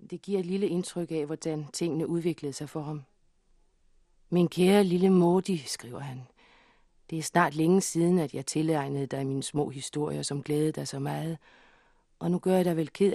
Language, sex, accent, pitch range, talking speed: Danish, female, native, 150-175 Hz, 190 wpm